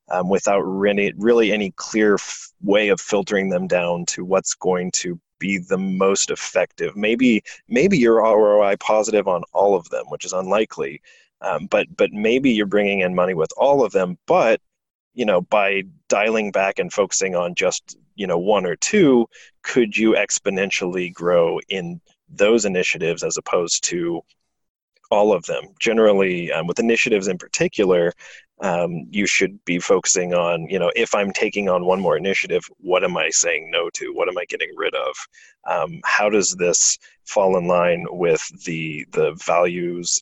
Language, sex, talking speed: English, male, 175 wpm